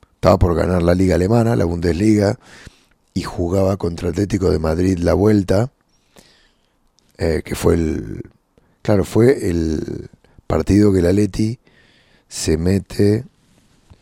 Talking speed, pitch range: 125 wpm, 85-105 Hz